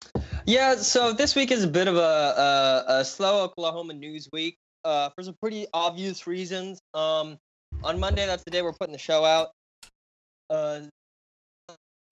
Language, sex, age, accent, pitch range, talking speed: English, male, 20-39, American, 150-195 Hz, 165 wpm